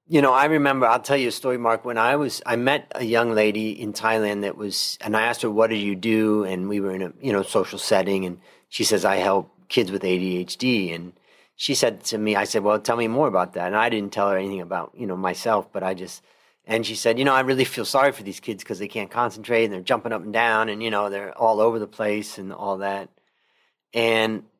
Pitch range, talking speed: 100-125 Hz, 260 wpm